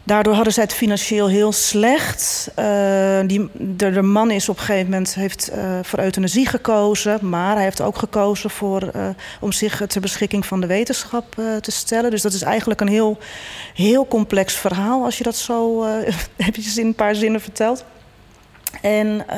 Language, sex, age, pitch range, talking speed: Dutch, female, 40-59, 185-215 Hz, 185 wpm